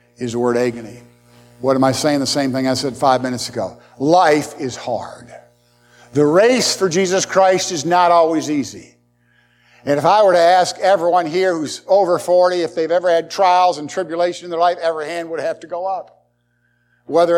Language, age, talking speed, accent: English, 50-69, 195 wpm, American